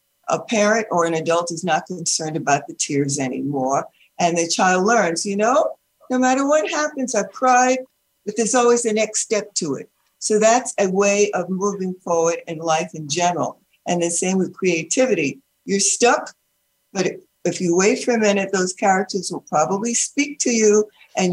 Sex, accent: female, American